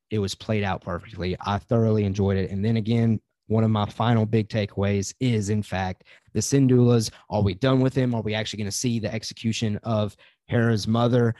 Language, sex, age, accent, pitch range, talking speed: English, male, 30-49, American, 105-125 Hz, 205 wpm